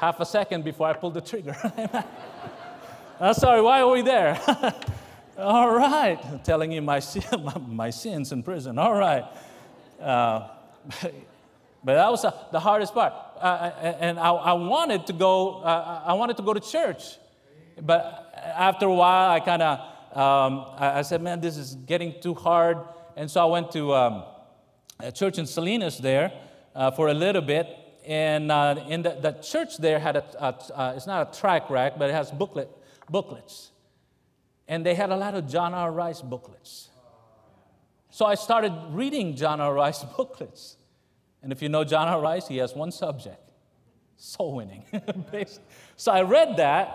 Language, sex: English, male